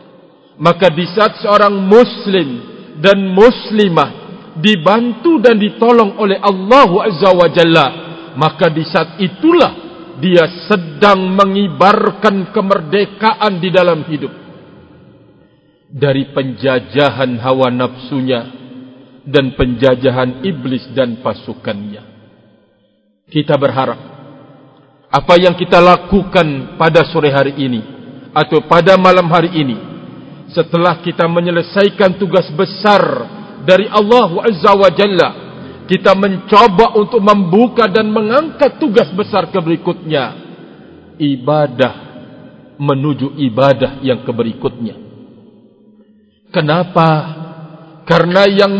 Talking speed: 95 wpm